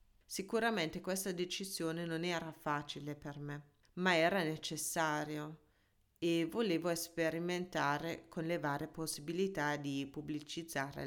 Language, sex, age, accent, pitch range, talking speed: Italian, female, 30-49, native, 155-190 Hz, 110 wpm